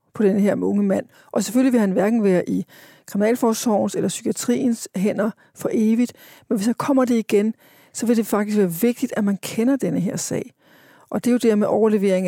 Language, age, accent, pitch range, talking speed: Danish, 40-59, native, 200-230 Hz, 210 wpm